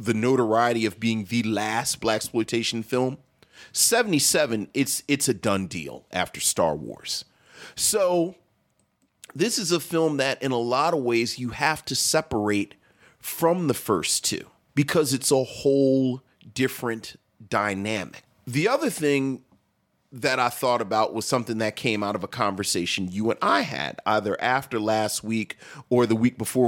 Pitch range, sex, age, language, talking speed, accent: 110-145 Hz, male, 40-59, English, 155 wpm, American